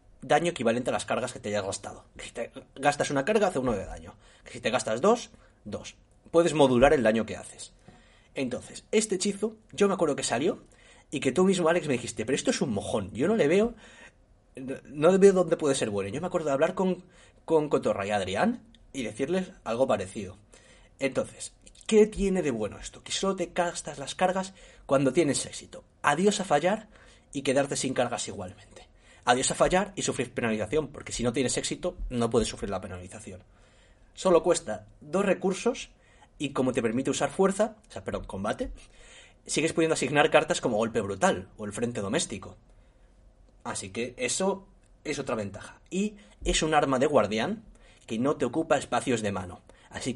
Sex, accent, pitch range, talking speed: male, Spanish, 110-180 Hz, 190 wpm